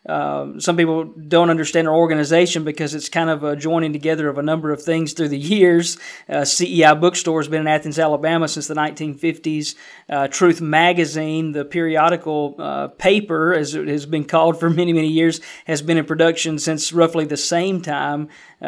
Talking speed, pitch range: 190 wpm, 150-165 Hz